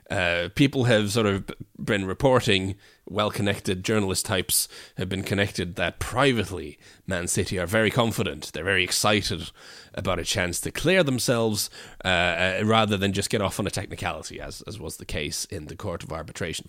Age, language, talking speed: 30-49, English, 180 wpm